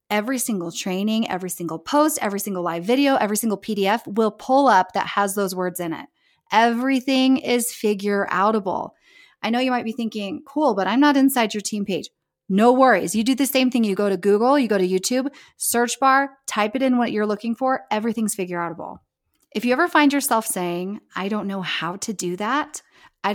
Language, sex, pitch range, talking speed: English, female, 205-285 Hz, 210 wpm